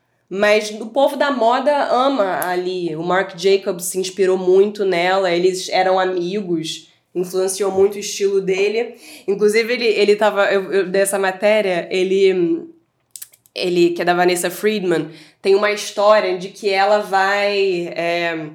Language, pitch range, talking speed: Portuguese, 180-210 Hz, 145 wpm